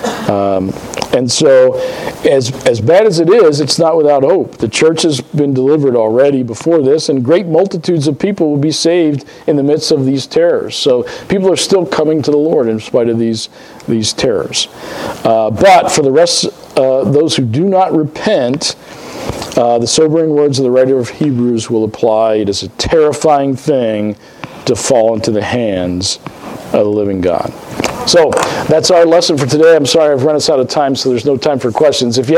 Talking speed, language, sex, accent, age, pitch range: 200 wpm, English, male, American, 50-69, 125-165 Hz